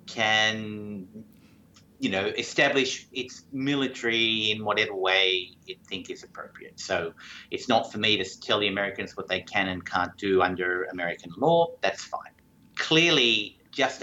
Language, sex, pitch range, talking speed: English, male, 100-130 Hz, 150 wpm